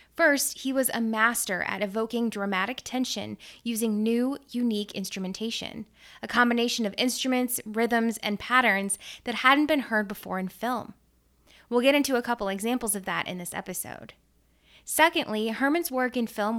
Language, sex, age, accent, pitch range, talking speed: English, female, 20-39, American, 210-255 Hz, 155 wpm